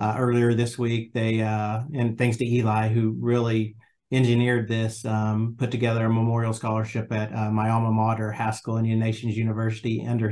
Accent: American